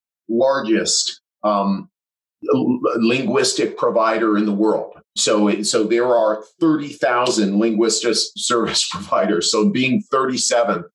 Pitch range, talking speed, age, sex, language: 105-130 Hz, 110 wpm, 40-59, male, English